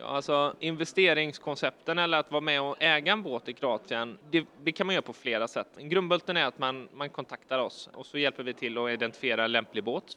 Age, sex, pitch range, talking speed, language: 20-39, male, 120-150 Hz, 225 wpm, Swedish